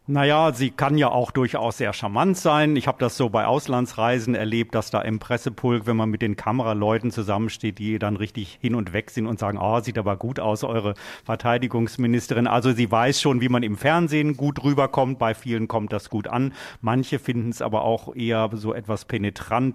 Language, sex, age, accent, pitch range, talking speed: German, male, 40-59, German, 115-135 Hz, 205 wpm